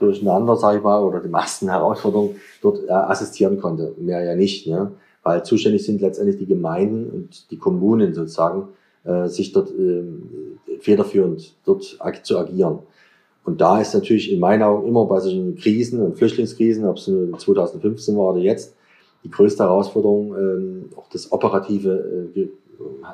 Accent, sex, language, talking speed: German, male, German, 165 wpm